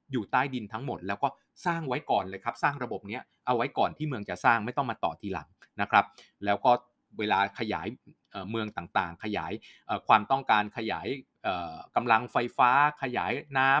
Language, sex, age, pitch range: Thai, male, 20-39, 105-135 Hz